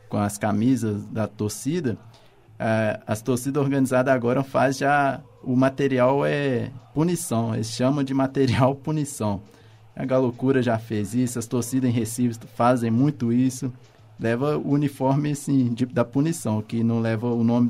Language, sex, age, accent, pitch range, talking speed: Portuguese, male, 20-39, Brazilian, 115-135 Hz, 155 wpm